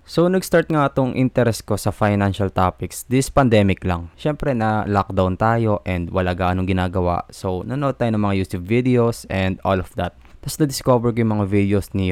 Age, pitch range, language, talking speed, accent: 20-39, 95-115 Hz, Filipino, 180 wpm, native